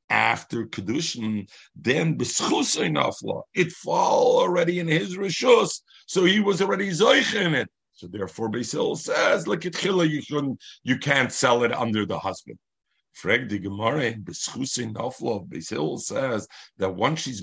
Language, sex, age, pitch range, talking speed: English, male, 50-69, 105-155 Hz, 135 wpm